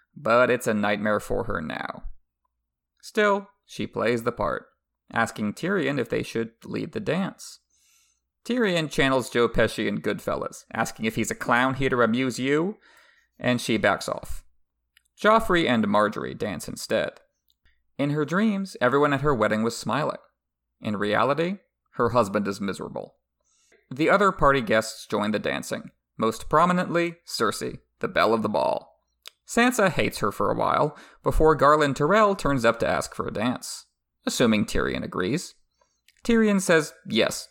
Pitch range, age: 110-160 Hz, 30-49